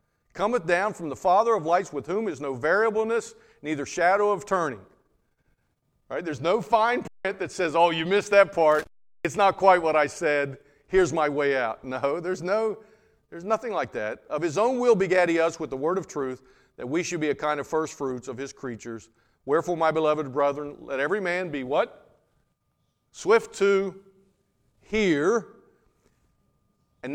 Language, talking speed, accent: English, 180 wpm, American